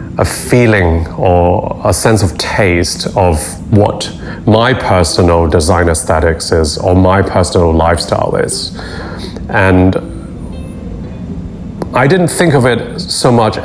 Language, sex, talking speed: English, male, 120 wpm